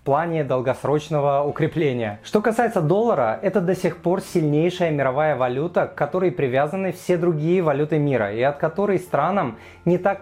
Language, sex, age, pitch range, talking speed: Russian, male, 20-39, 145-180 Hz, 160 wpm